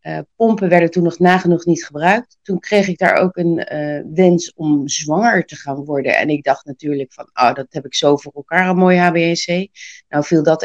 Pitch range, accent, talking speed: 155-195 Hz, Dutch, 220 wpm